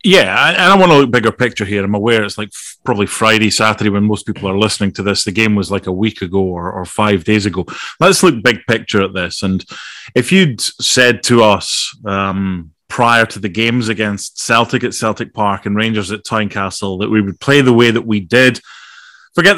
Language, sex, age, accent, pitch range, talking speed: English, male, 30-49, British, 105-135 Hz, 215 wpm